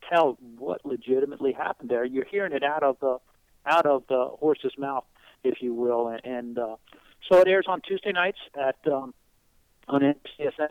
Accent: American